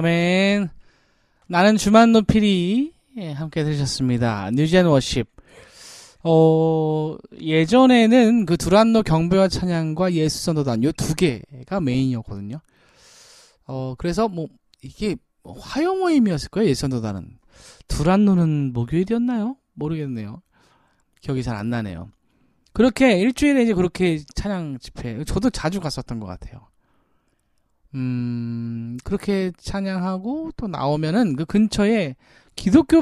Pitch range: 130-210 Hz